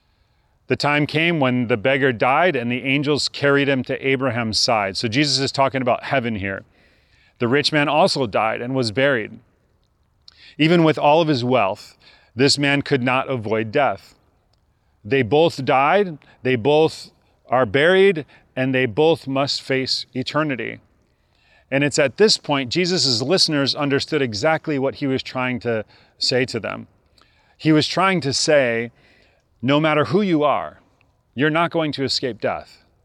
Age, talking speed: 40-59, 160 wpm